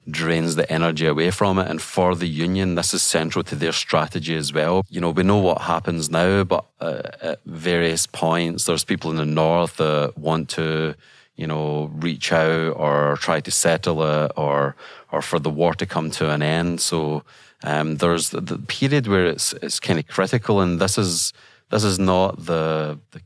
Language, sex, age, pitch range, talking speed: English, male, 30-49, 80-95 Hz, 200 wpm